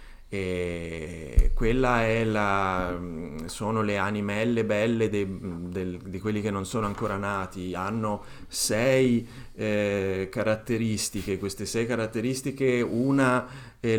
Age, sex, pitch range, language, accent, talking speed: 30-49, male, 95-120 Hz, Italian, native, 105 wpm